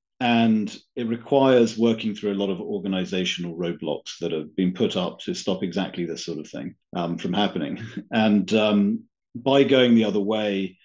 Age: 40-59